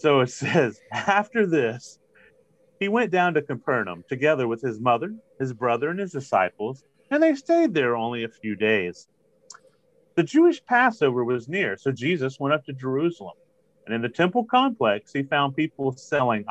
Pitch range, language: 125-190 Hz, English